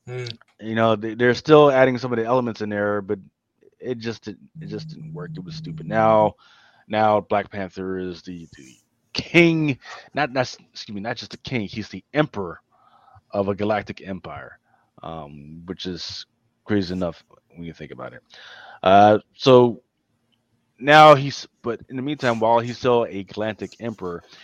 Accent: American